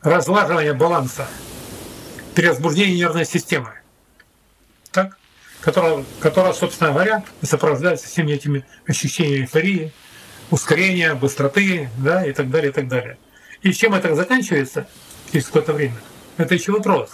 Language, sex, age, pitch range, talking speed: Russian, male, 40-59, 145-180 Hz, 110 wpm